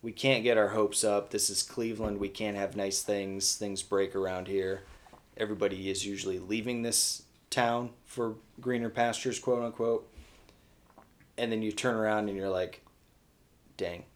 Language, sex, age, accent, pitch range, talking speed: English, male, 20-39, American, 100-115 Hz, 155 wpm